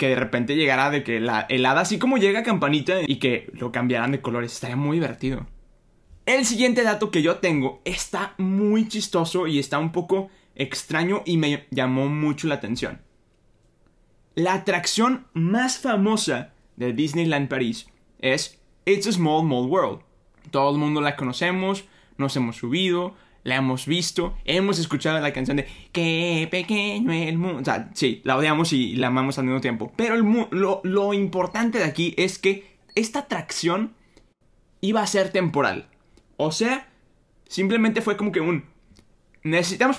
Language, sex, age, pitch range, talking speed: Spanish, male, 20-39, 135-200 Hz, 160 wpm